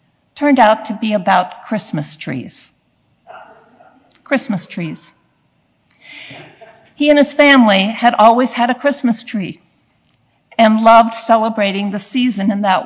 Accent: American